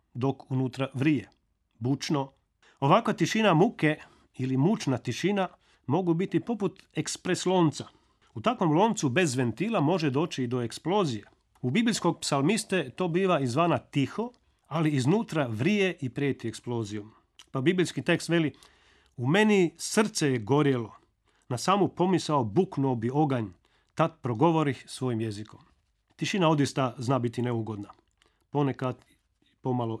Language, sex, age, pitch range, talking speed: Croatian, male, 40-59, 125-170 Hz, 130 wpm